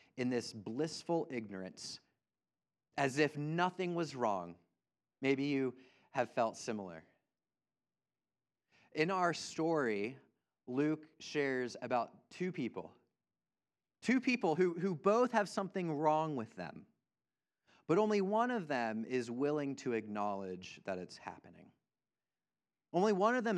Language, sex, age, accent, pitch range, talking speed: English, male, 30-49, American, 110-155 Hz, 120 wpm